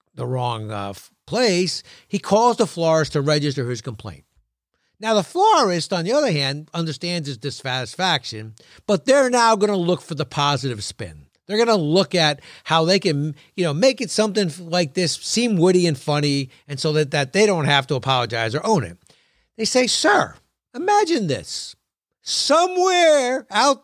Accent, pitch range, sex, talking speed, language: American, 150-235 Hz, male, 175 wpm, English